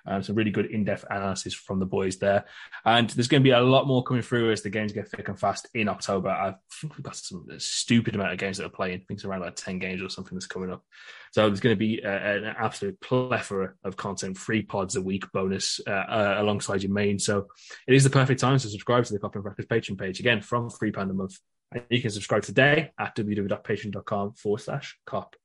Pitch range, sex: 100-140 Hz, male